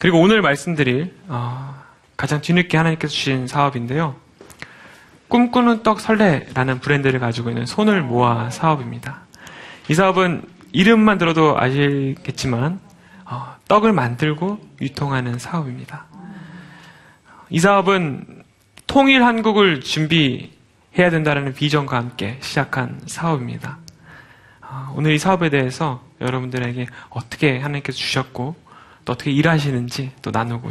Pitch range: 130-185 Hz